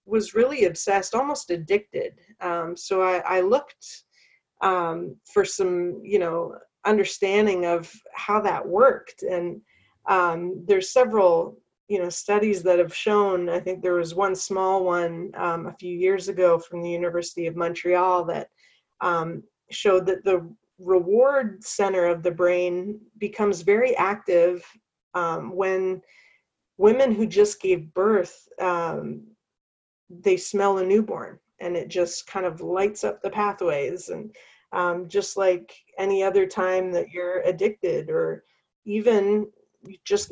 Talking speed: 140 wpm